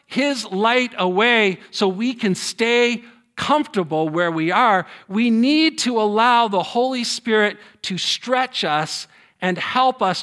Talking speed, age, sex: 140 wpm, 50-69, male